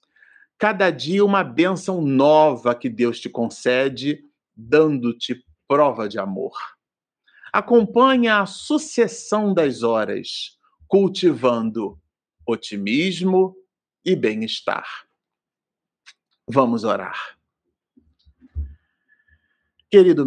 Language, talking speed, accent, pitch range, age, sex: Portuguese, 75 wpm, Brazilian, 110-145 Hz, 50-69, male